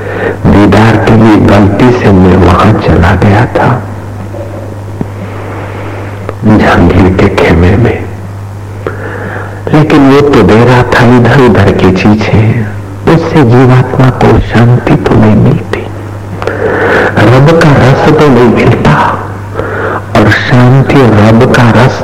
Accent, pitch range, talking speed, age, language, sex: native, 100-120 Hz, 110 wpm, 60-79, Hindi, male